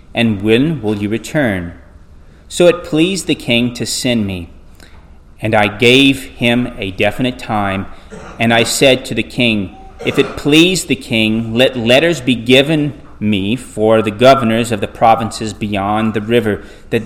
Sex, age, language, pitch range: male, 30-49, English, 100-125 Hz